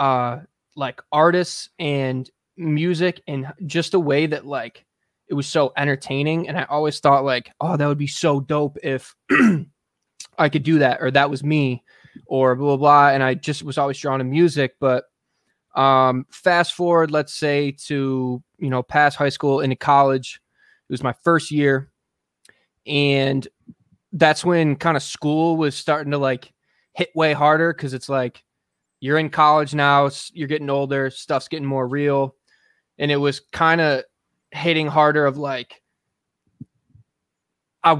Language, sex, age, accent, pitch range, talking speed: English, male, 20-39, American, 135-155 Hz, 165 wpm